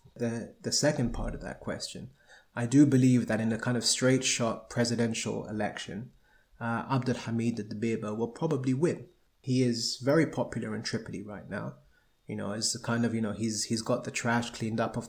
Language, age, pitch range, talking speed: English, 30-49, 115-125 Hz, 195 wpm